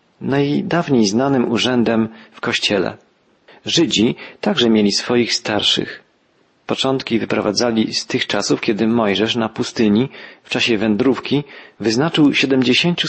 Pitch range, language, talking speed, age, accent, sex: 105-130 Hz, Polish, 110 wpm, 40-59, native, male